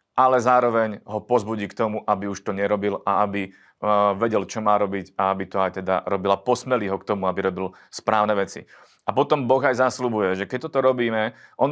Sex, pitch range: male, 110-125 Hz